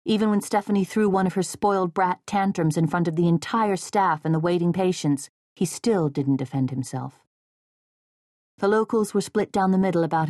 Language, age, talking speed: English, 40-59, 190 wpm